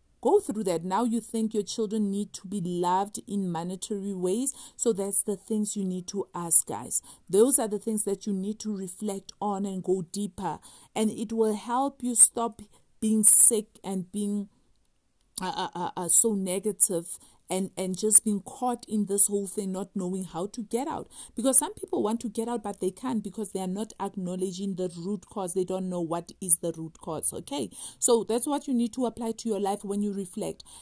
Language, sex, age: English, female, 50-69